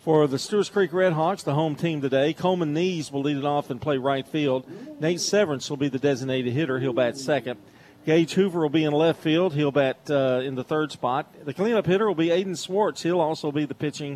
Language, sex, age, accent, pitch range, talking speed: English, male, 40-59, American, 130-165 Hz, 235 wpm